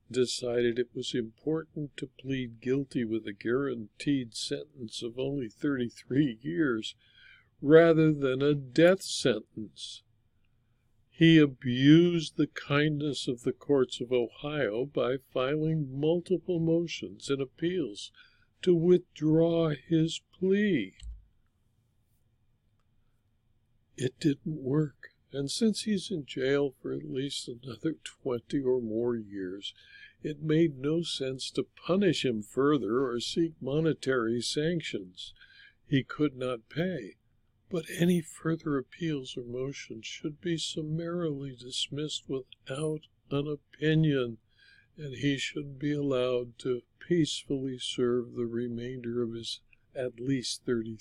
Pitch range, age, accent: 115-155 Hz, 60-79, American